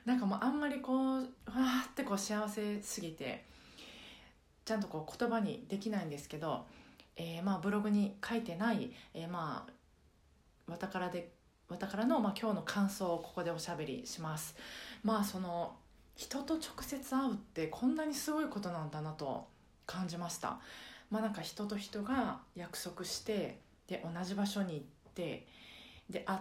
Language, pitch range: Japanese, 165-230 Hz